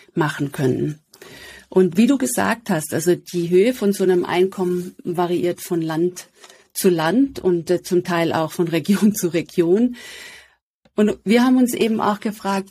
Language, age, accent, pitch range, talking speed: German, 40-59, German, 175-210 Hz, 165 wpm